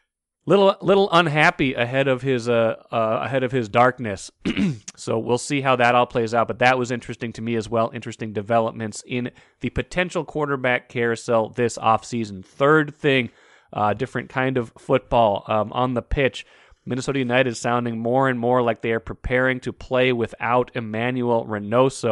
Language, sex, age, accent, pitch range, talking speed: English, male, 30-49, American, 115-130 Hz, 170 wpm